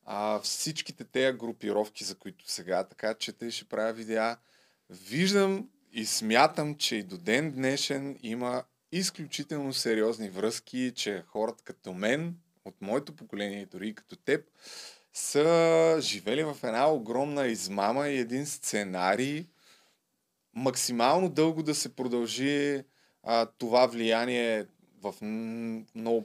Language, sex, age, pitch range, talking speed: Bulgarian, male, 20-39, 105-140 Hz, 125 wpm